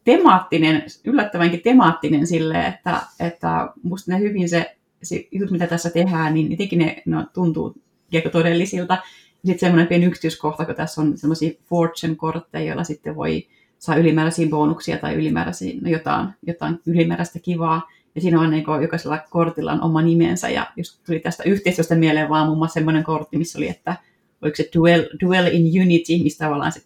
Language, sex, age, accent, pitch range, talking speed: Finnish, female, 30-49, native, 155-175 Hz, 165 wpm